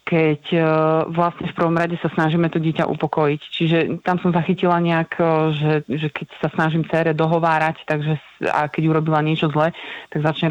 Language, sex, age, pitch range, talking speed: Slovak, female, 30-49, 155-180 Hz, 170 wpm